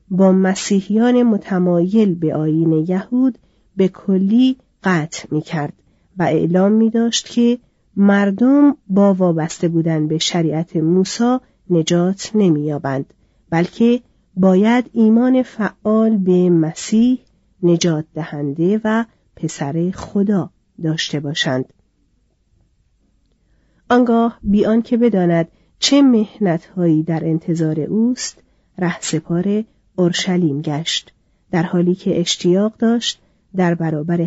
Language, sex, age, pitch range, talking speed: Persian, female, 40-59, 165-210 Hz, 105 wpm